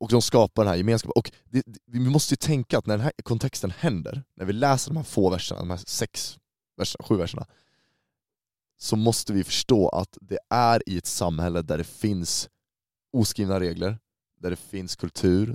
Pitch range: 90-115 Hz